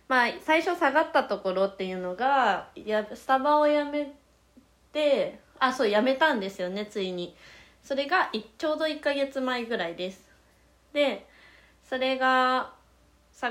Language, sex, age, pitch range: Japanese, female, 20-39, 195-255 Hz